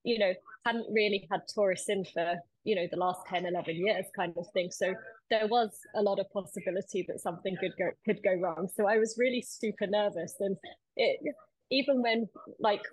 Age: 20-39